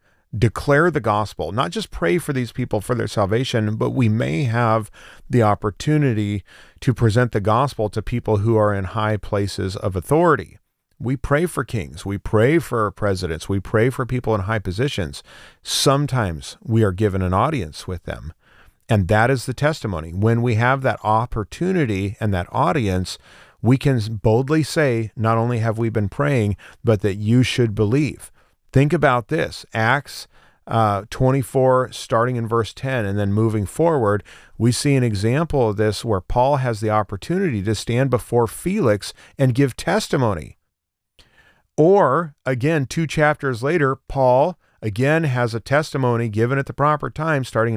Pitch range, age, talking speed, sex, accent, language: 105-140 Hz, 40-59, 165 wpm, male, American, English